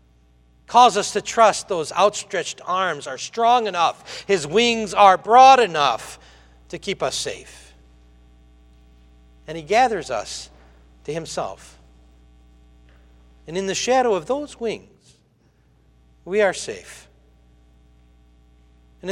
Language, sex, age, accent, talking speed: English, male, 60-79, American, 115 wpm